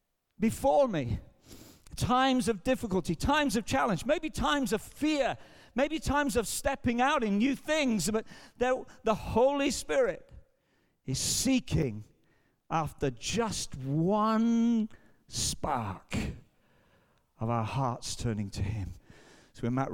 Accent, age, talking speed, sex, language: British, 50-69, 115 wpm, male, English